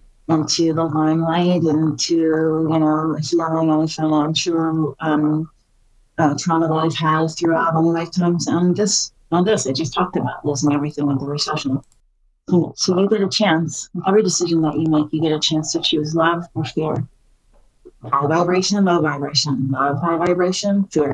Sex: female